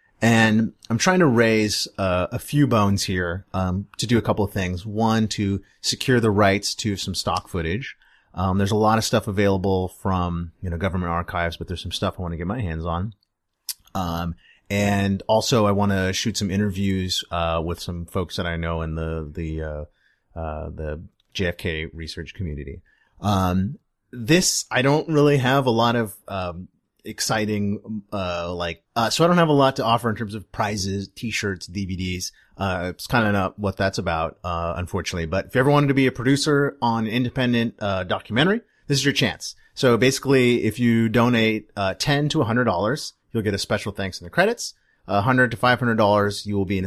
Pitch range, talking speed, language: 90-120 Hz, 200 wpm, English